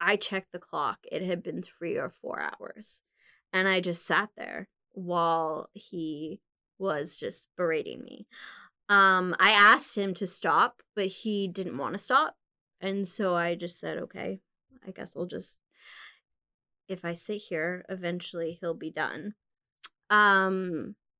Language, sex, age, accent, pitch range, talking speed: English, female, 20-39, American, 180-210 Hz, 150 wpm